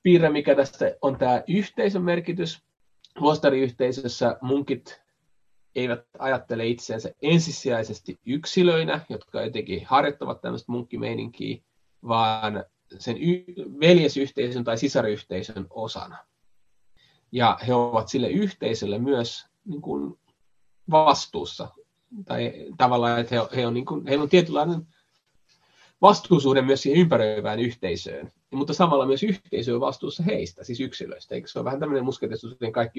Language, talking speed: Finnish, 115 wpm